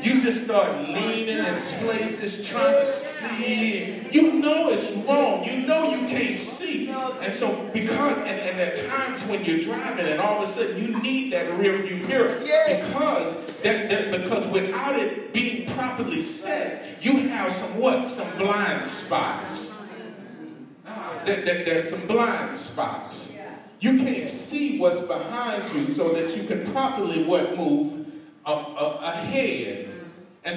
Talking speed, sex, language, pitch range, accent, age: 150 wpm, male, English, 185-270 Hz, American, 40-59